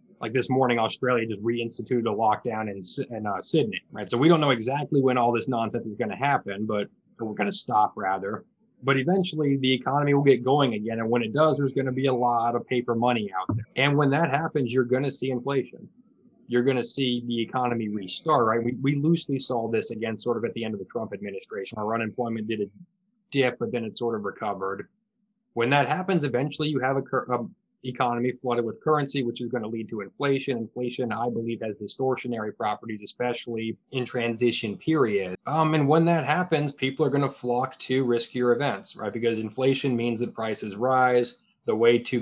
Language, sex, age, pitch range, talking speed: English, male, 20-39, 115-140 Hz, 215 wpm